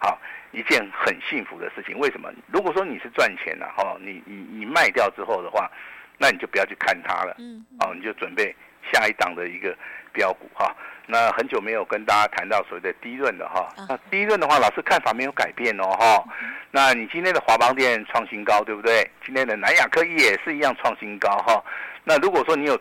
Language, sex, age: Chinese, male, 50-69